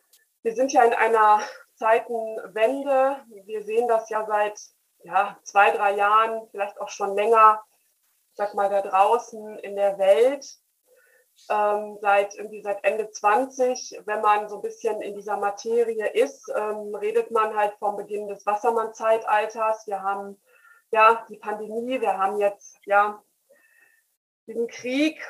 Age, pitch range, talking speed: 20-39, 205-250 Hz, 140 wpm